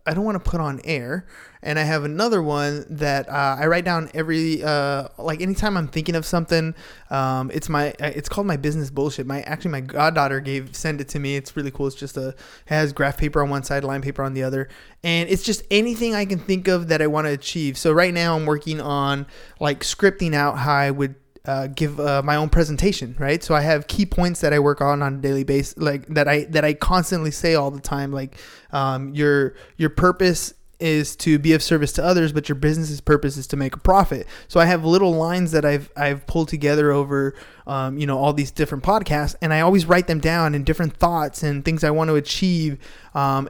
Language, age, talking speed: English, 20-39, 235 wpm